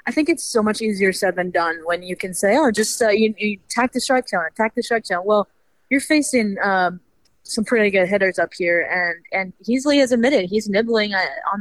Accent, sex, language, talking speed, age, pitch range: American, female, English, 235 wpm, 20-39, 180-215 Hz